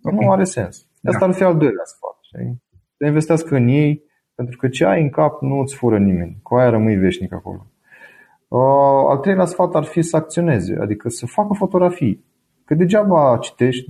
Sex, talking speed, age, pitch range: male, 175 wpm, 30-49, 110-155 Hz